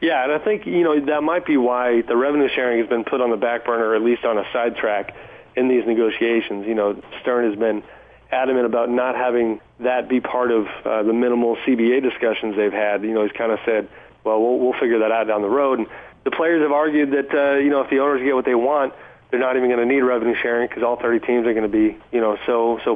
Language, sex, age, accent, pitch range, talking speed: English, male, 30-49, American, 115-135 Hz, 260 wpm